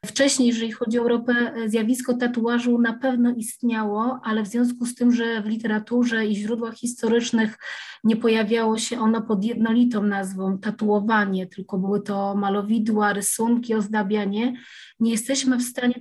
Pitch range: 215-240 Hz